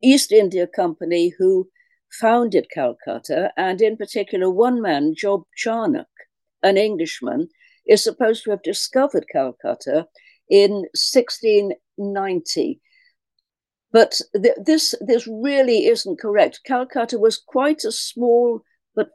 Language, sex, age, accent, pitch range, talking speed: English, female, 50-69, British, 205-340 Hz, 105 wpm